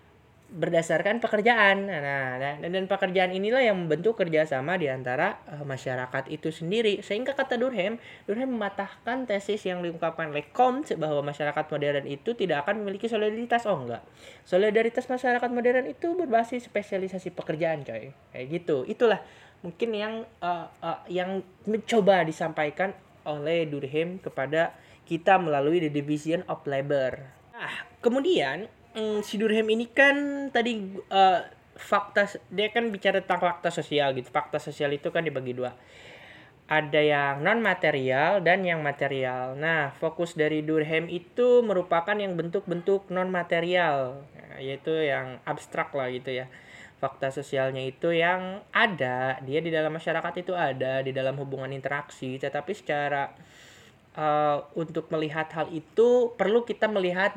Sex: male